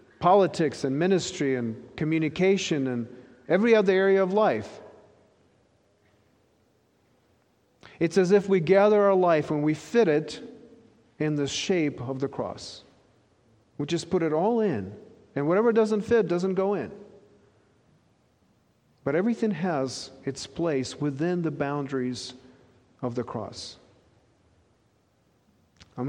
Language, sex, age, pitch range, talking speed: English, male, 40-59, 125-170 Hz, 120 wpm